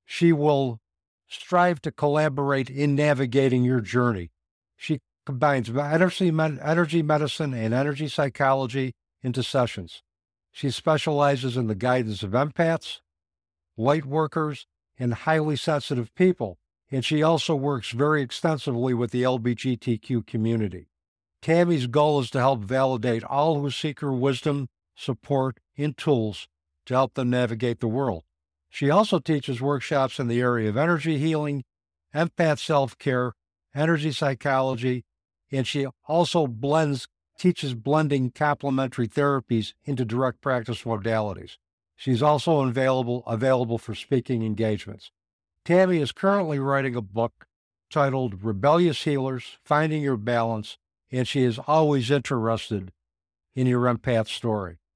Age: 60-79